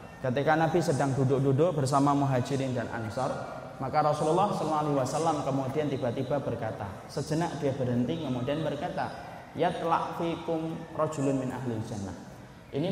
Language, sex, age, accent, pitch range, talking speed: Indonesian, male, 20-39, native, 120-150 Hz, 100 wpm